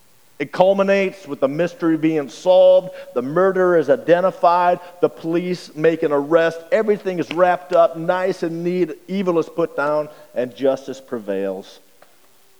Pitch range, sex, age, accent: 120-170 Hz, male, 50-69, American